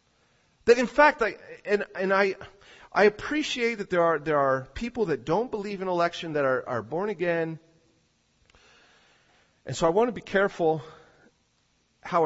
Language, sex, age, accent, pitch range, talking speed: English, male, 40-59, American, 155-210 Hz, 160 wpm